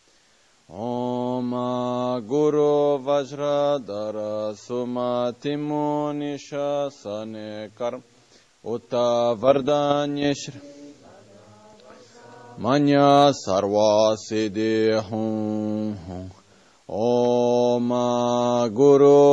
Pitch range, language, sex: 105-140 Hz, Italian, male